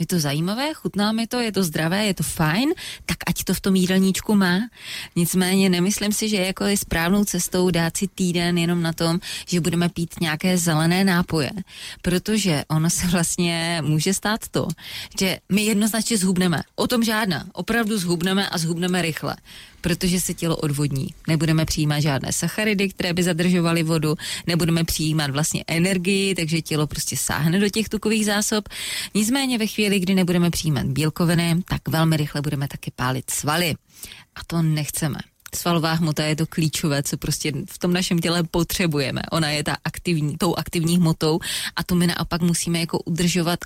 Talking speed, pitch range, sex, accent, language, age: 170 wpm, 160-190 Hz, female, native, Czech, 20-39